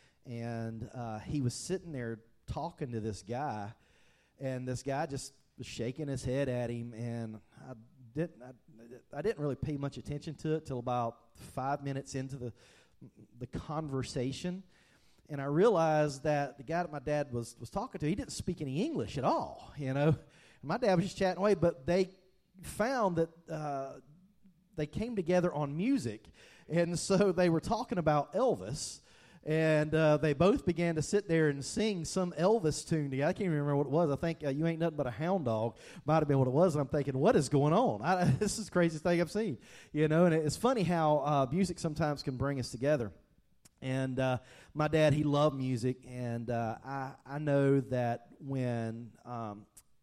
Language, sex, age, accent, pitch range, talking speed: English, male, 40-59, American, 130-165 Hz, 195 wpm